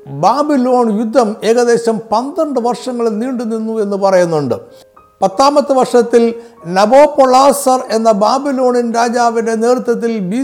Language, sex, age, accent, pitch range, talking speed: Malayalam, male, 50-69, native, 190-250 Hz, 105 wpm